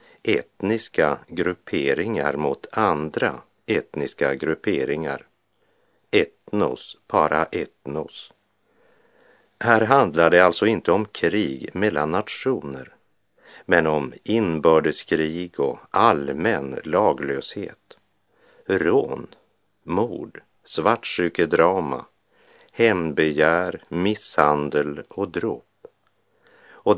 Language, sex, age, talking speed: Swedish, male, 50-69, 70 wpm